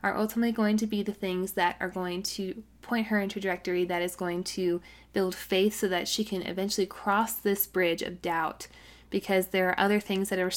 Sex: female